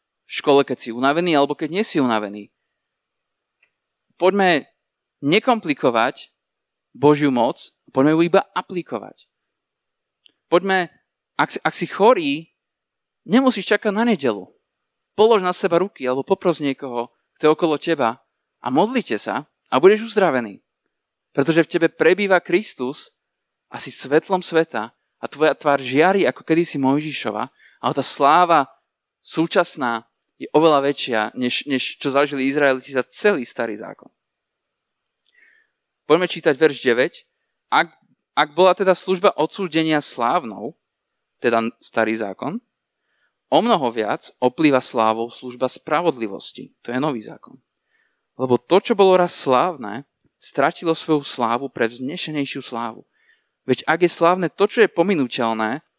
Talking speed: 130 wpm